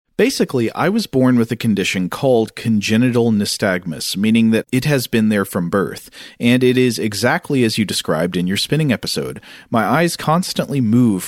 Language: English